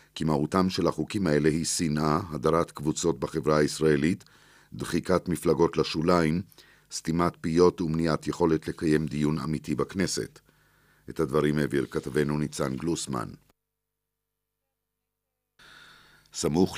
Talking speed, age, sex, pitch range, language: 105 wpm, 50-69, male, 75-85 Hz, Hebrew